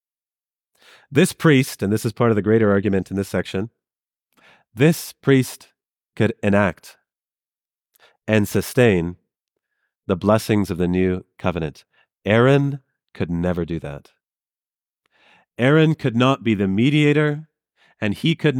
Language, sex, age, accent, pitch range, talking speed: English, male, 30-49, American, 115-185 Hz, 125 wpm